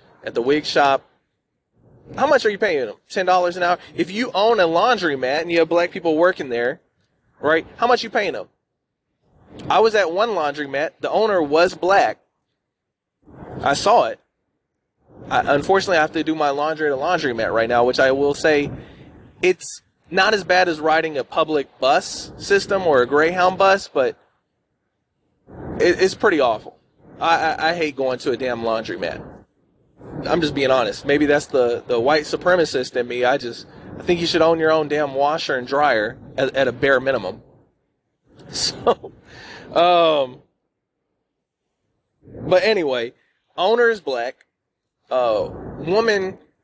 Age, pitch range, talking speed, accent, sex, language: 20-39, 140-195 Hz, 165 wpm, American, male, English